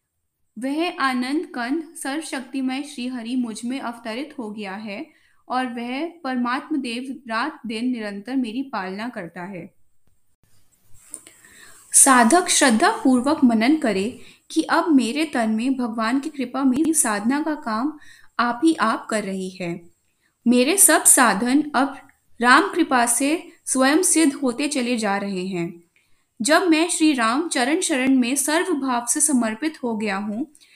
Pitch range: 225-310 Hz